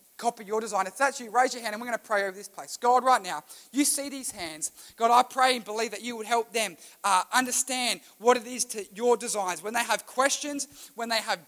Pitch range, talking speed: 205-250 Hz, 255 wpm